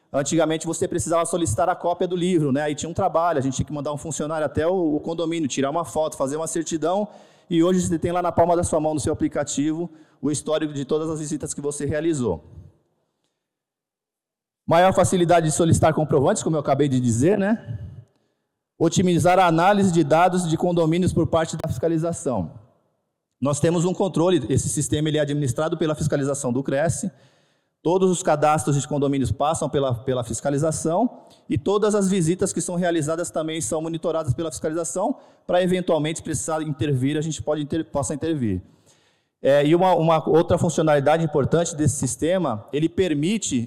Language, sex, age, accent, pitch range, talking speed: Portuguese, male, 20-39, Brazilian, 145-175 Hz, 170 wpm